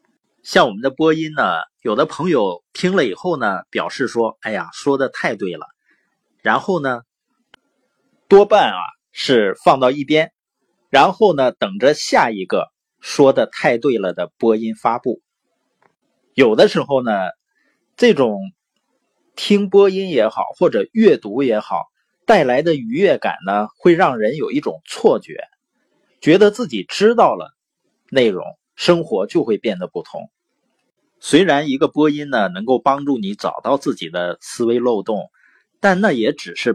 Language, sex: Chinese, male